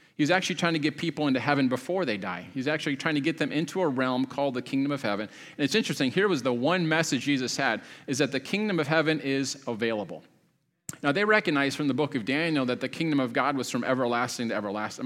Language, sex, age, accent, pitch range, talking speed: English, male, 30-49, American, 125-160 Hz, 245 wpm